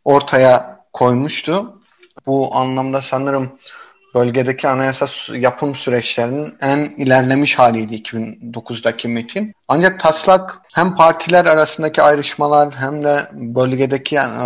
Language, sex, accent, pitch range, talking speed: Turkish, male, native, 125-155 Hz, 95 wpm